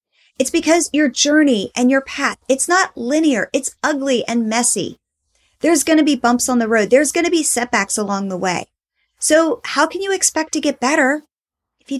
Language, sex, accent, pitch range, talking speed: English, female, American, 210-270 Hz, 200 wpm